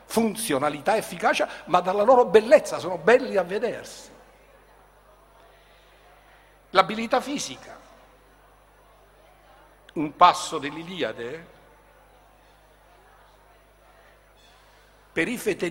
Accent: native